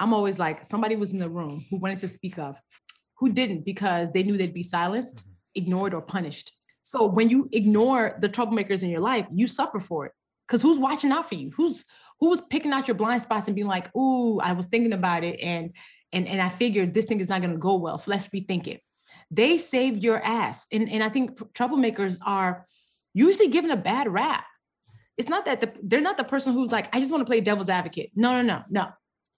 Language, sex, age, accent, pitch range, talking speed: English, female, 20-39, American, 185-245 Hz, 230 wpm